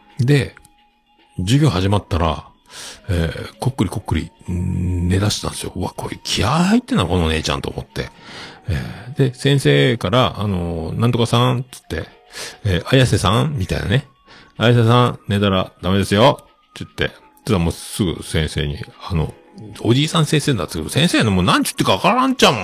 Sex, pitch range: male, 85-145 Hz